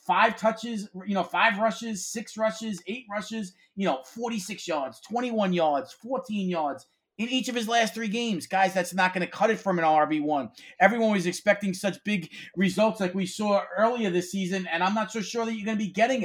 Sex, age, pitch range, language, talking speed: male, 30-49, 175-210 Hz, English, 215 wpm